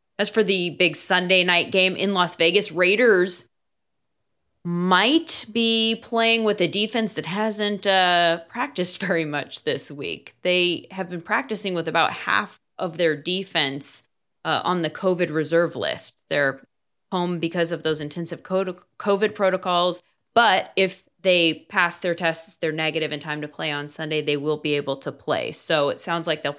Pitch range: 155-185 Hz